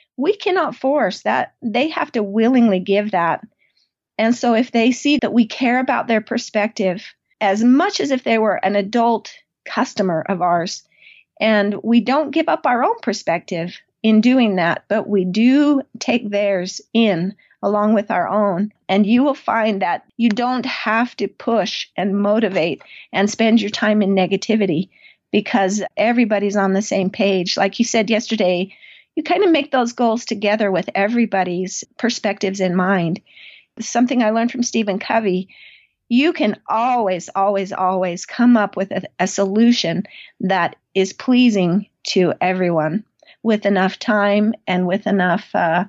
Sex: female